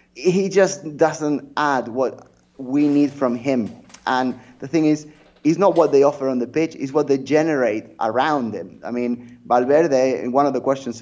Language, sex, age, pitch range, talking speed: English, male, 20-39, 120-145 Hz, 190 wpm